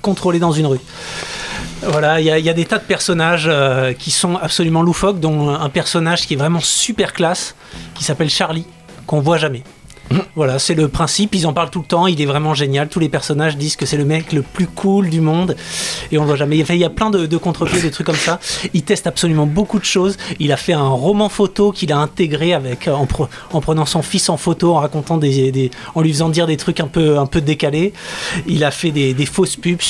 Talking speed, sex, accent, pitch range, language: 245 wpm, male, French, 145-175 Hz, French